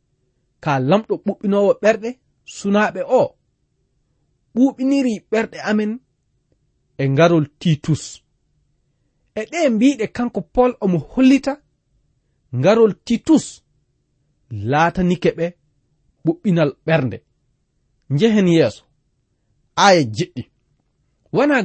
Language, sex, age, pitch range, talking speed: English, male, 30-49, 140-220 Hz, 85 wpm